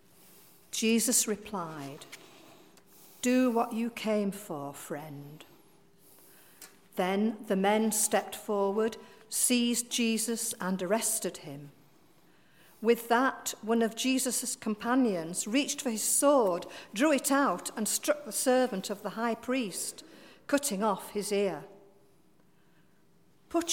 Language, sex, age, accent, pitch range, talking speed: English, female, 50-69, British, 190-245 Hz, 110 wpm